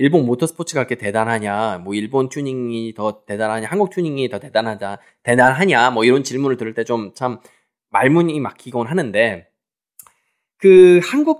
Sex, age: male, 20-39